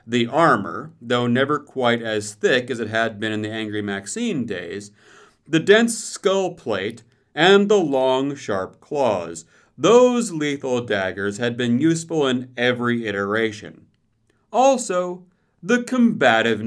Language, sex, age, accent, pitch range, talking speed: English, male, 40-59, American, 115-180 Hz, 135 wpm